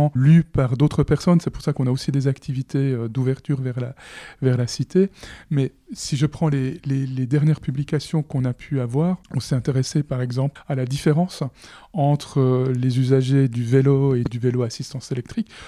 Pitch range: 130-155 Hz